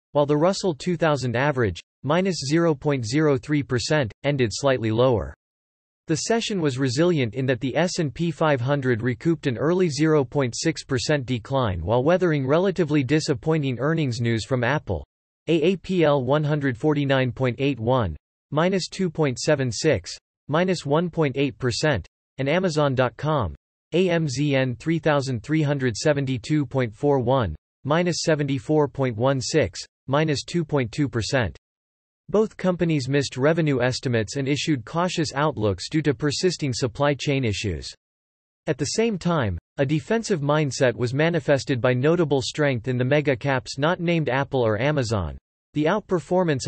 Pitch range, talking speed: 125-155 Hz, 110 wpm